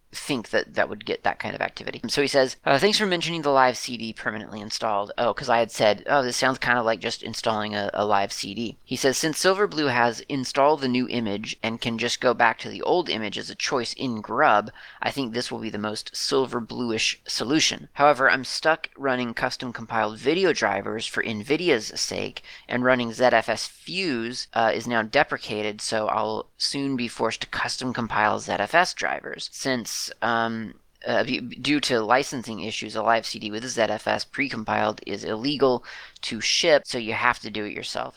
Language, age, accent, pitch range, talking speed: English, 30-49, American, 110-135 Hz, 195 wpm